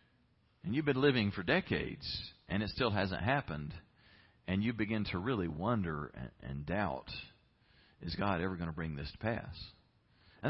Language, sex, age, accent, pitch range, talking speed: English, male, 40-59, American, 95-135 Hz, 170 wpm